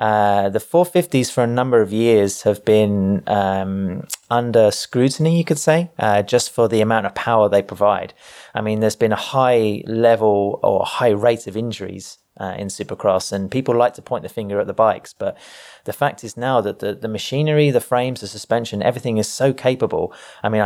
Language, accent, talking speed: English, British, 200 wpm